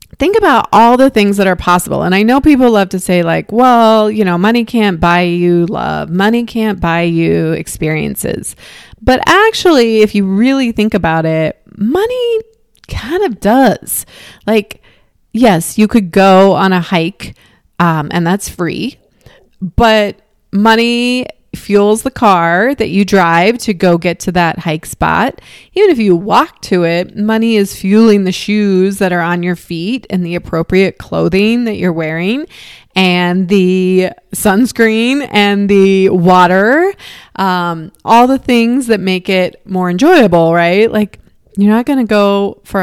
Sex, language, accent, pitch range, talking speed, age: female, English, American, 180-235 Hz, 160 wpm, 30-49